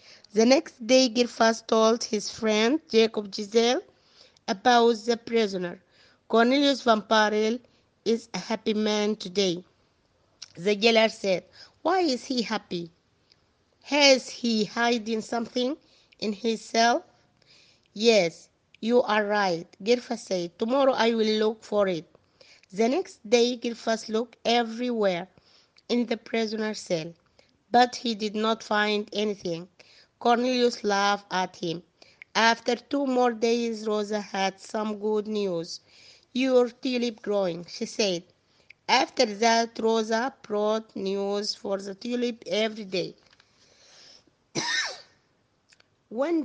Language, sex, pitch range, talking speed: Arabic, female, 205-240 Hz, 115 wpm